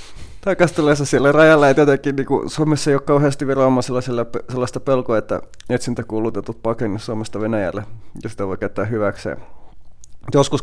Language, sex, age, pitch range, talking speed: Finnish, male, 30-49, 110-130 Hz, 145 wpm